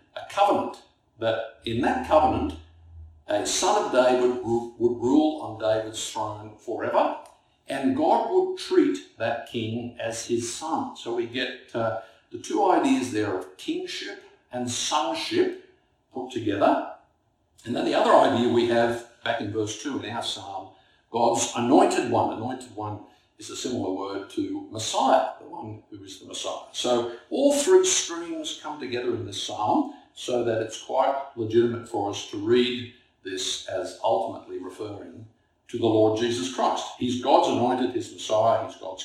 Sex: male